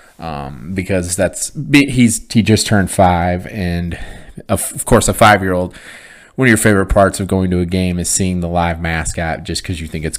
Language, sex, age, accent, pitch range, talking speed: English, male, 30-49, American, 90-115 Hz, 200 wpm